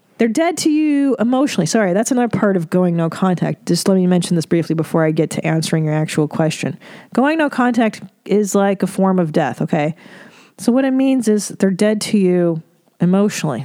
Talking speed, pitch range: 205 wpm, 165-215 Hz